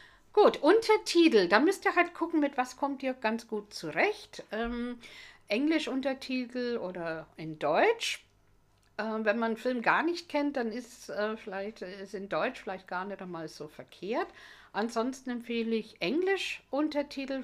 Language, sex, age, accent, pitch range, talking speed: German, female, 60-79, German, 195-265 Hz, 160 wpm